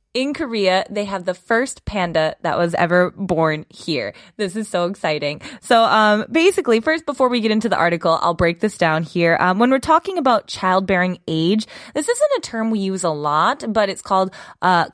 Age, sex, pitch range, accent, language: 20-39, female, 180-255 Hz, American, Korean